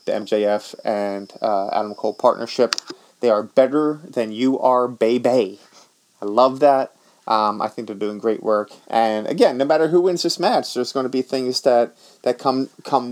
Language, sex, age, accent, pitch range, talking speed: English, male, 30-49, American, 110-135 Hz, 190 wpm